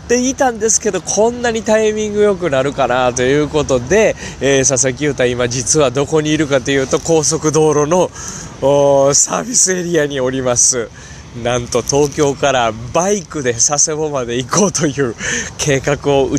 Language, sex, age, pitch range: Japanese, male, 20-39, 120-160 Hz